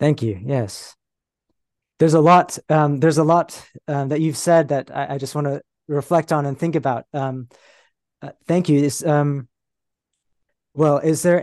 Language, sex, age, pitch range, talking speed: English, male, 20-39, 130-155 Hz, 180 wpm